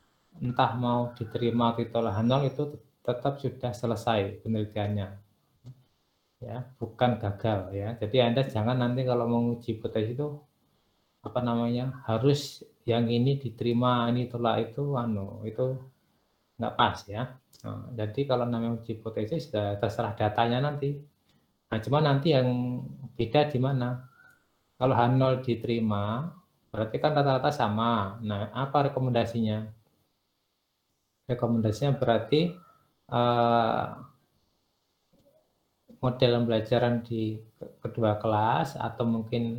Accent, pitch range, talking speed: native, 110-130 Hz, 110 wpm